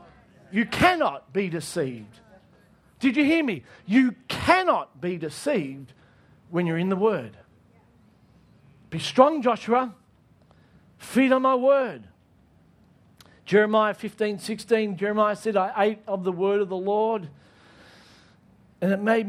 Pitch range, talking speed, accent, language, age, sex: 145-215 Hz, 125 wpm, Australian, English, 50-69, male